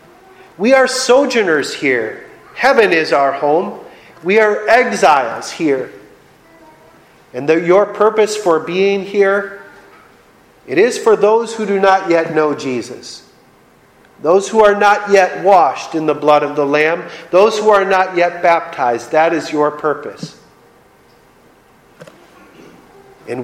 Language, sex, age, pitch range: English, male, 40-59, 145-210 Hz